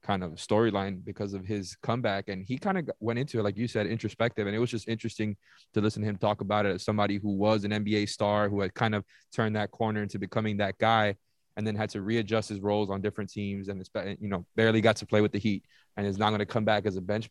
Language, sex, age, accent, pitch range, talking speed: English, male, 20-39, American, 100-110 Hz, 275 wpm